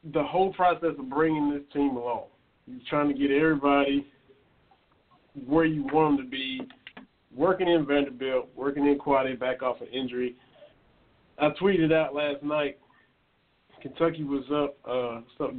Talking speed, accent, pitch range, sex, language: 145 wpm, American, 135-160 Hz, male, English